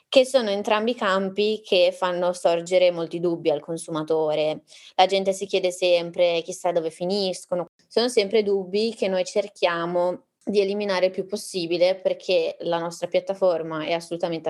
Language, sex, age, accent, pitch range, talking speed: Italian, female, 20-39, native, 170-200 Hz, 155 wpm